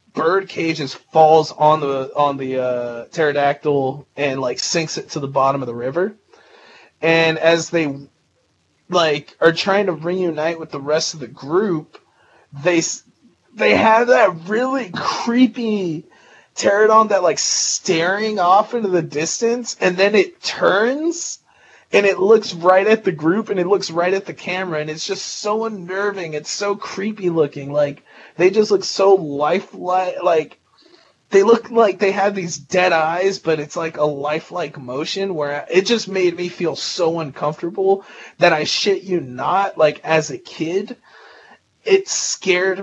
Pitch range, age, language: 150-195 Hz, 30-49, English